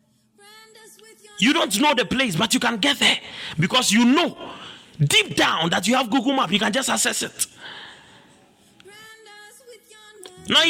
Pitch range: 235-325 Hz